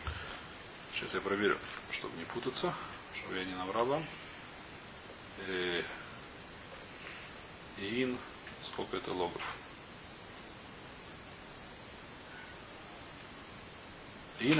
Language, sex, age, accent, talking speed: Russian, male, 40-59, native, 65 wpm